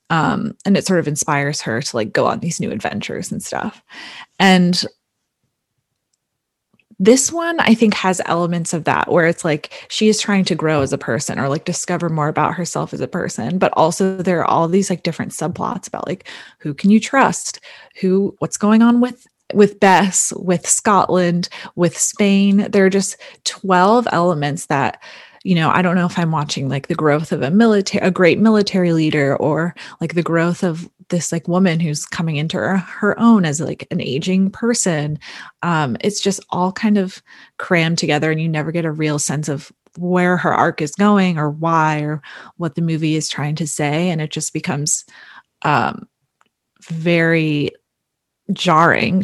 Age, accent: 20-39, American